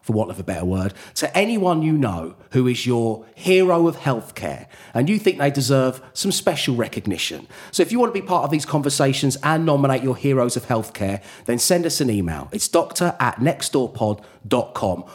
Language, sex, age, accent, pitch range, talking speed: English, male, 40-59, British, 105-150 Hz, 195 wpm